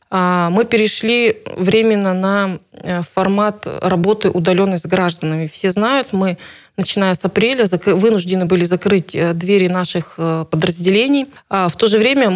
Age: 20-39